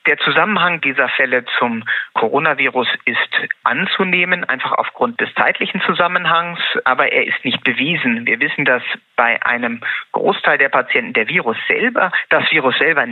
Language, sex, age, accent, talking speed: German, male, 30-49, German, 135 wpm